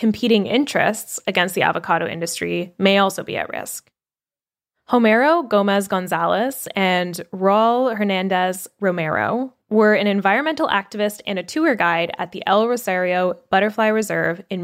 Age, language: 10-29, English